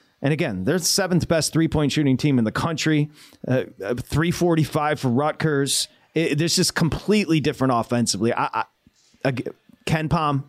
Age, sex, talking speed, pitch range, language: 30-49, male, 130 wpm, 125-150 Hz, English